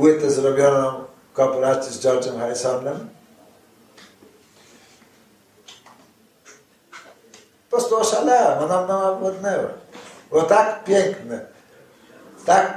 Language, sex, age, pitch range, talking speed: Polish, male, 60-79, 135-190 Hz, 80 wpm